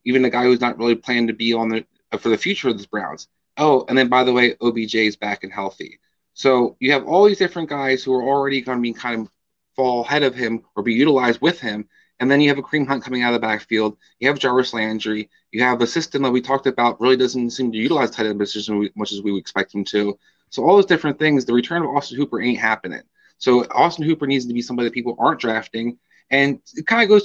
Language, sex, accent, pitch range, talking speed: English, male, American, 115-145 Hz, 260 wpm